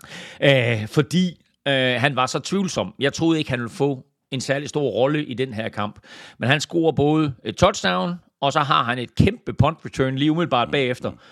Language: Danish